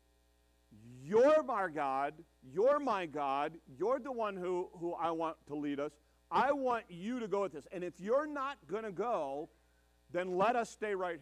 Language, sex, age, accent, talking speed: English, male, 50-69, American, 185 wpm